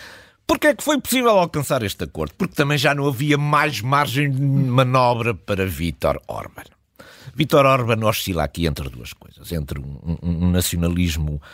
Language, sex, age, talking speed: Portuguese, male, 50-69, 165 wpm